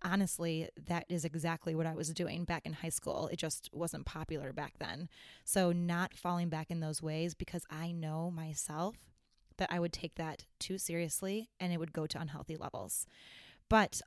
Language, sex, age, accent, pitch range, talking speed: English, female, 20-39, American, 165-185 Hz, 190 wpm